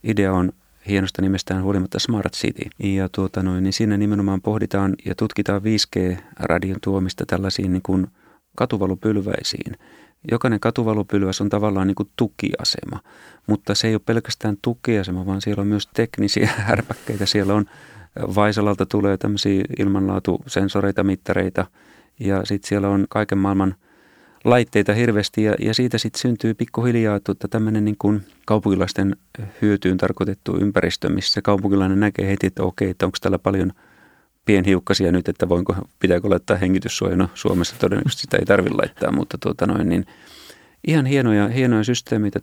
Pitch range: 95-110 Hz